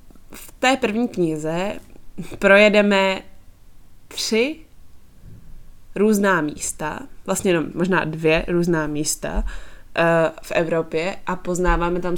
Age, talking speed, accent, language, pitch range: 20-39, 95 wpm, native, Czech, 160-200 Hz